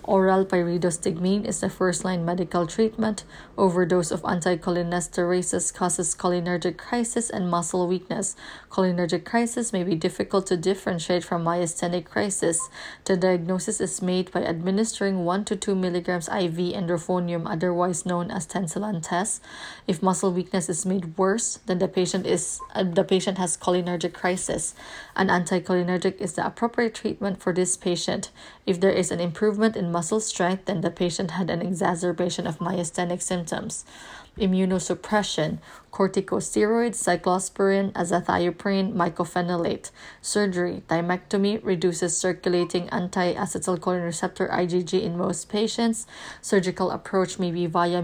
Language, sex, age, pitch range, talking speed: English, female, 20-39, 175-195 Hz, 130 wpm